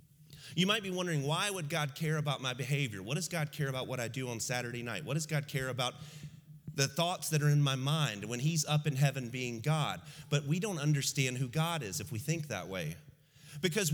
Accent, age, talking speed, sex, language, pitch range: American, 30-49, 230 wpm, male, English, 140-170 Hz